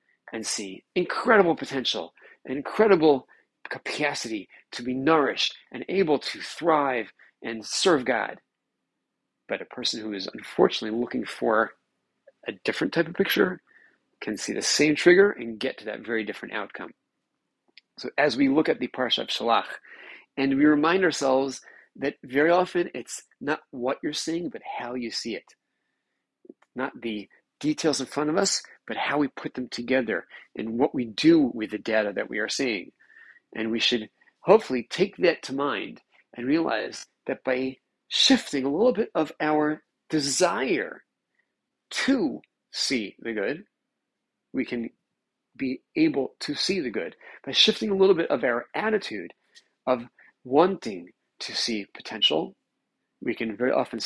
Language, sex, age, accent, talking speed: English, male, 40-59, American, 155 wpm